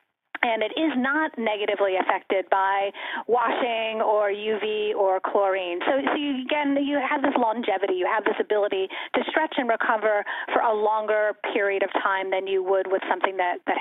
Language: English